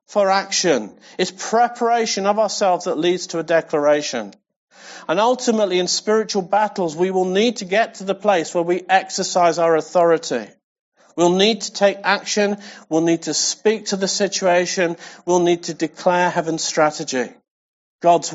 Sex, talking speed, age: male, 155 wpm, 50-69